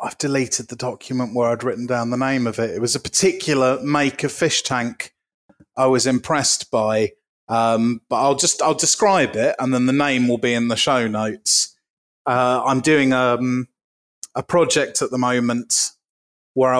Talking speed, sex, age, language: 180 wpm, male, 30-49, English